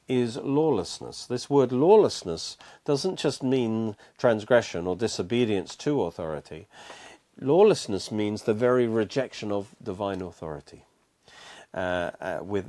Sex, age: male, 50-69